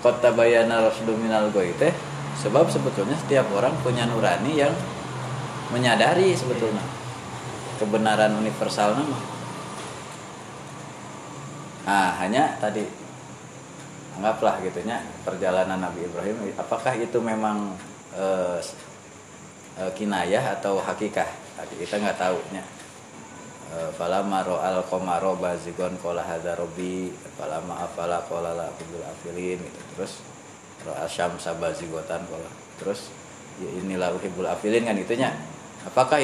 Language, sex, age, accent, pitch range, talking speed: Indonesian, male, 20-39, native, 90-115 Hz, 90 wpm